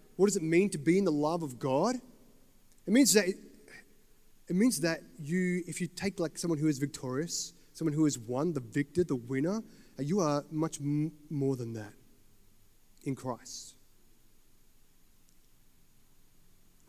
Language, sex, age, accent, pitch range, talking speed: English, male, 30-49, Australian, 120-155 Hz, 155 wpm